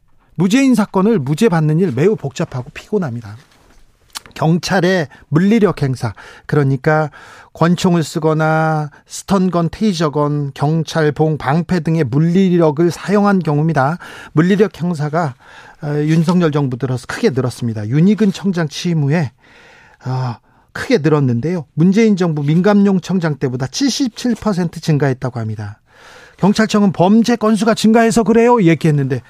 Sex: male